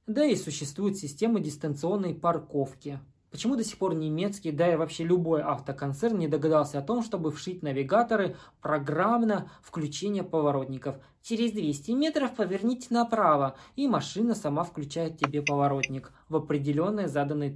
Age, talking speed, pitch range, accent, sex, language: 20-39, 135 wpm, 145-205 Hz, native, male, Russian